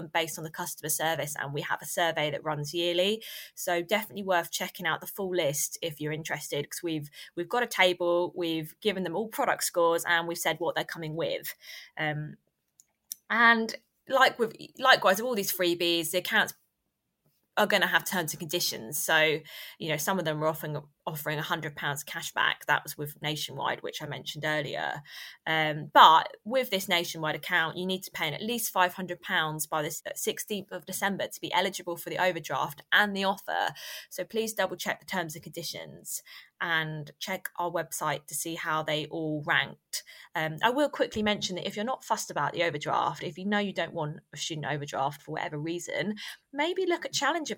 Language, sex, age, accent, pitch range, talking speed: English, female, 20-39, British, 160-200 Hz, 200 wpm